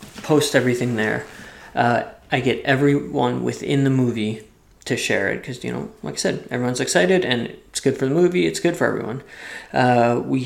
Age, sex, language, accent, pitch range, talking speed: 20-39, male, English, American, 115-130 Hz, 190 wpm